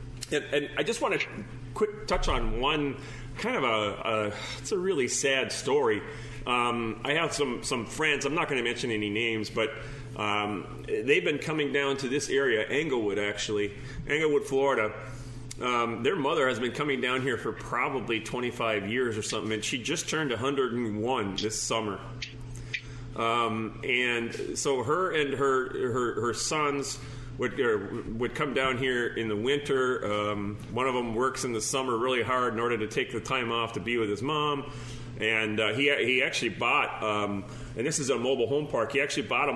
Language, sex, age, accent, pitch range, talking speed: English, male, 30-49, American, 110-135 Hz, 185 wpm